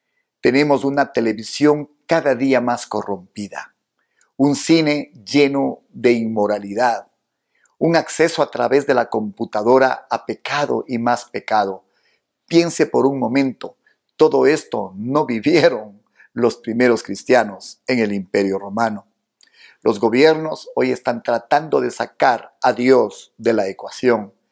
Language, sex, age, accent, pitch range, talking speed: Spanish, male, 50-69, Mexican, 110-145 Hz, 125 wpm